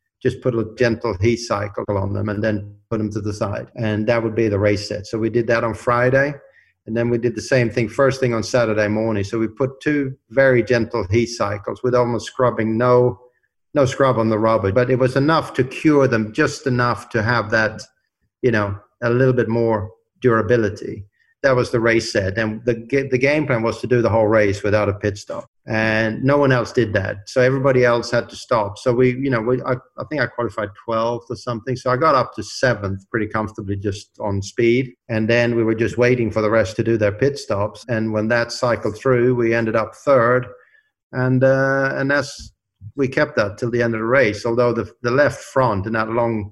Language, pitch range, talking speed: English, 110-125 Hz, 225 wpm